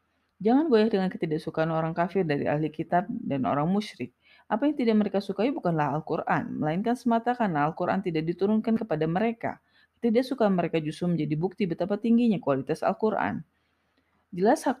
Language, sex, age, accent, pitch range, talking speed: Indonesian, female, 30-49, native, 155-220 Hz, 155 wpm